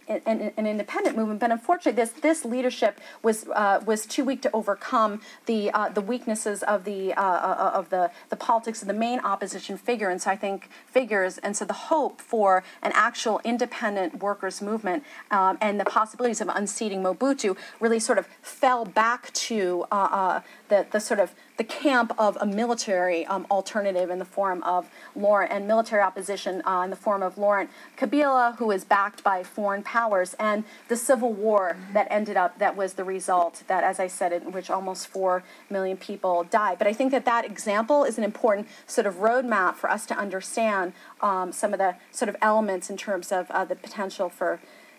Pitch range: 195-235 Hz